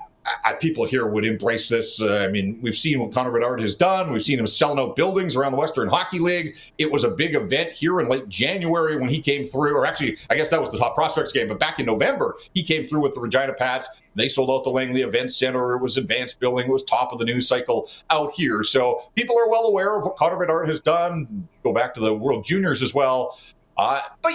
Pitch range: 125-170 Hz